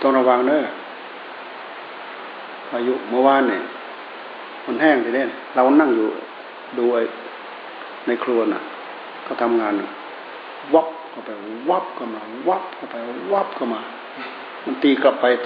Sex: male